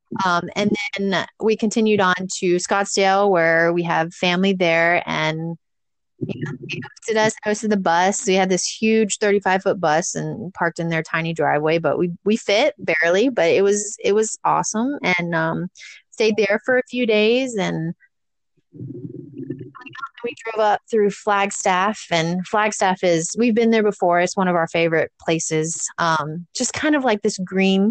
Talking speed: 165 wpm